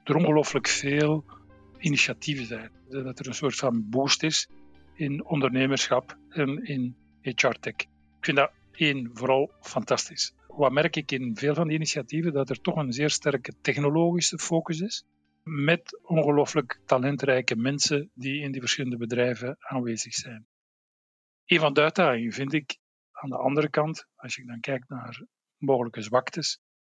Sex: male